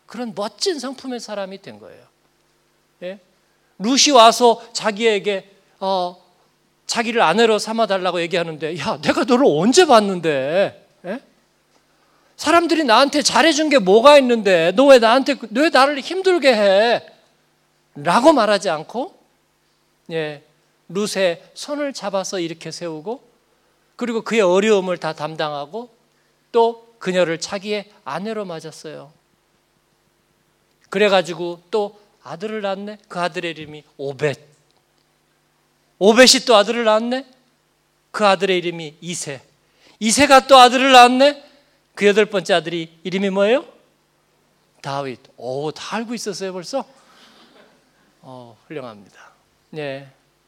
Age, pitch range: 40-59, 170-235 Hz